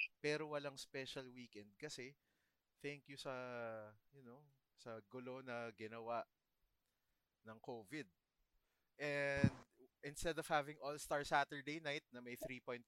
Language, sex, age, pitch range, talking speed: English, male, 20-39, 115-150 Hz, 120 wpm